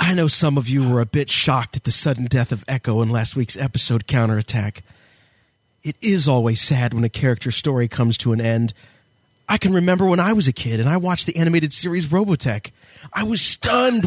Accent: American